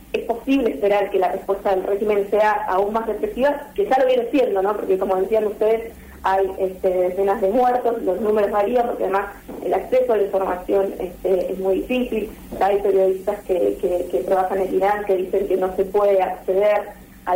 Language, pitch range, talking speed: Spanish, 195-240 Hz, 185 wpm